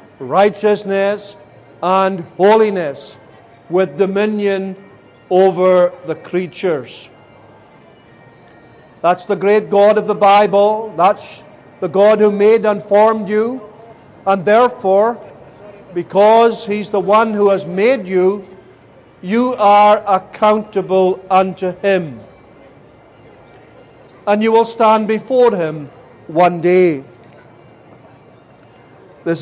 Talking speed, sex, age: 95 wpm, male, 50-69